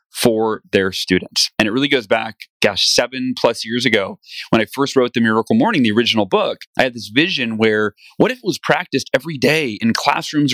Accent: American